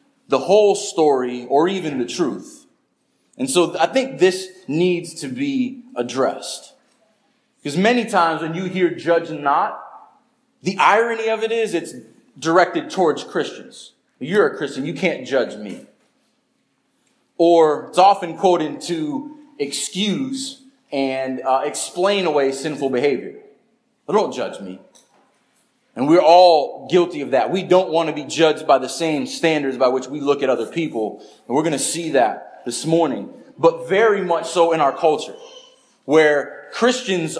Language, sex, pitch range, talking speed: English, male, 150-210 Hz, 150 wpm